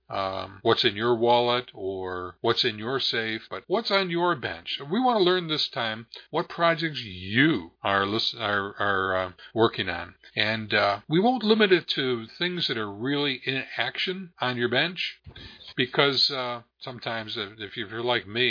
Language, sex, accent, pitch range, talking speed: English, male, American, 105-135 Hz, 180 wpm